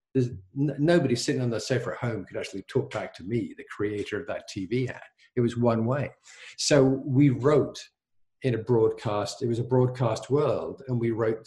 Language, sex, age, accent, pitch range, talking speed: English, male, 50-69, British, 110-140 Hz, 200 wpm